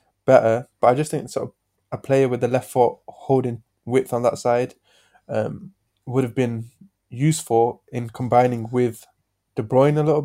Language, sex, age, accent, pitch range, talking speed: English, male, 20-39, British, 115-130 Hz, 175 wpm